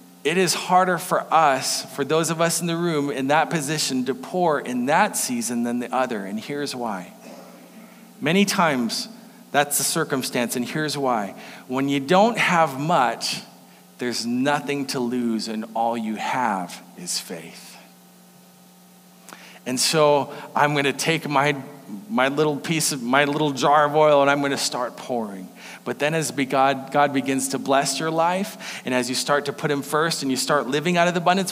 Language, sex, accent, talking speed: English, male, American, 185 wpm